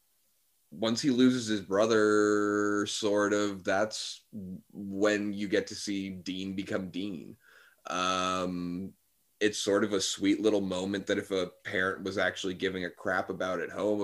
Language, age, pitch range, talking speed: English, 30-49, 95-125 Hz, 155 wpm